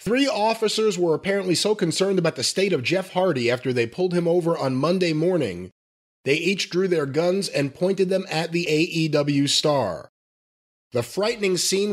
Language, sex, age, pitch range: English, male, 30-49, 150-200 Hz